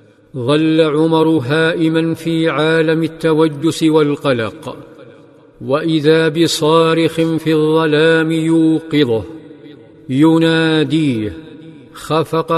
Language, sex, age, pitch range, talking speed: Arabic, male, 50-69, 150-160 Hz, 65 wpm